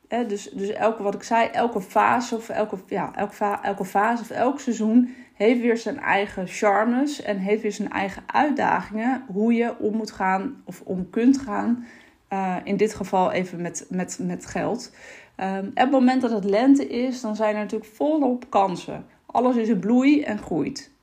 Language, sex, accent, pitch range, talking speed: Dutch, female, Dutch, 200-245 Hz, 165 wpm